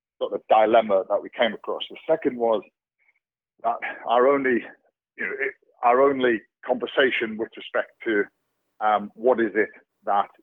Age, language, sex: 40-59, English, male